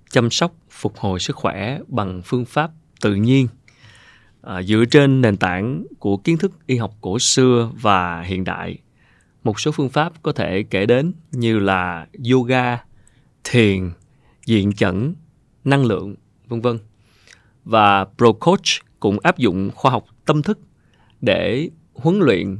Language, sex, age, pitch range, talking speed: Vietnamese, male, 20-39, 105-135 Hz, 150 wpm